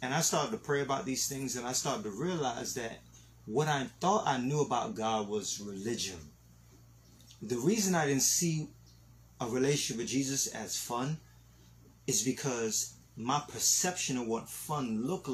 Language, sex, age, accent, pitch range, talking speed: English, male, 30-49, American, 105-135 Hz, 165 wpm